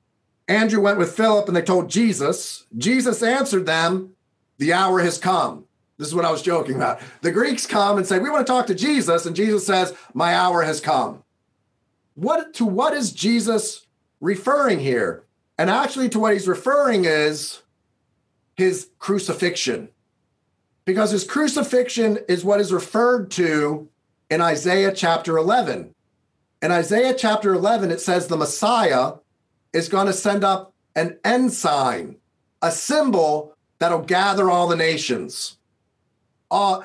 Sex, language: male, English